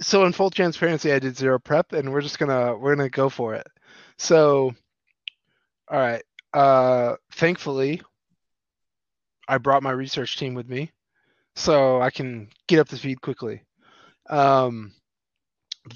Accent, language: American, English